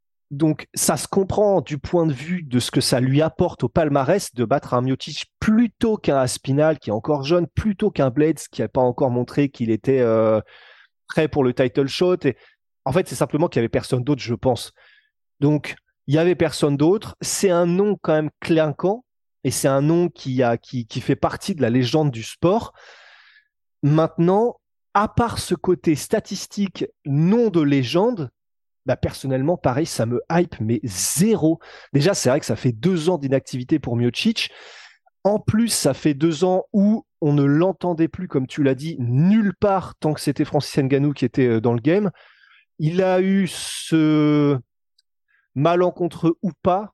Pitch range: 135-180 Hz